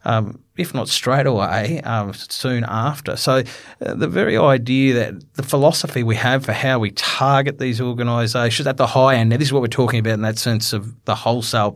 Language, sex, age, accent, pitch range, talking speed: English, male, 30-49, Australian, 100-125 Hz, 205 wpm